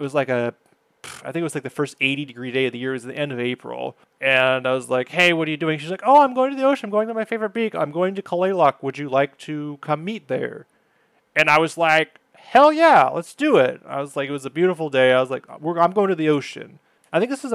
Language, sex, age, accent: English, male, 30-49, American